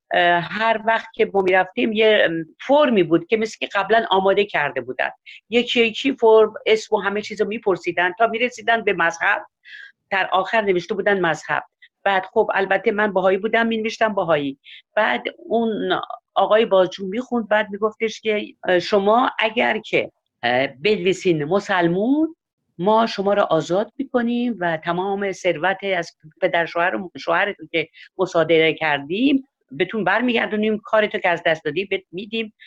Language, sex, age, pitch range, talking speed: Persian, female, 50-69, 170-220 Hz, 145 wpm